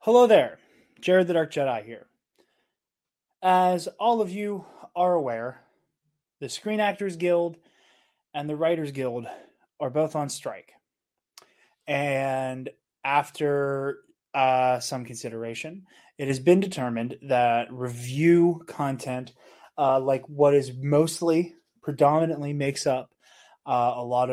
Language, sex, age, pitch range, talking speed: English, male, 20-39, 120-160 Hz, 120 wpm